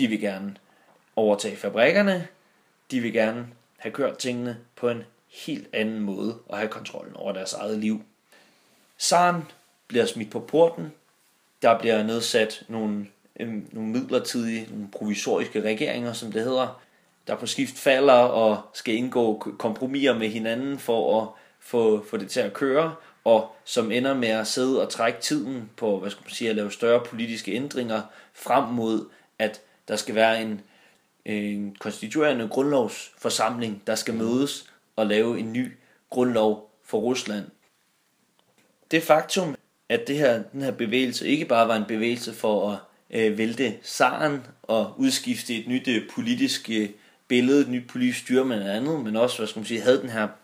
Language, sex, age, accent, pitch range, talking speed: Danish, male, 30-49, native, 110-130 Hz, 155 wpm